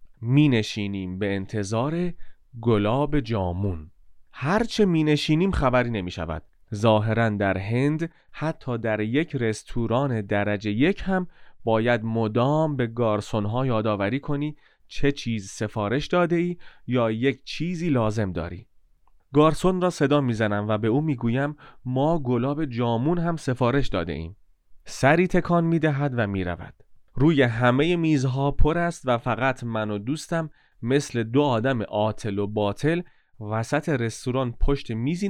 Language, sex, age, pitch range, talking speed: Persian, male, 30-49, 110-155 Hz, 125 wpm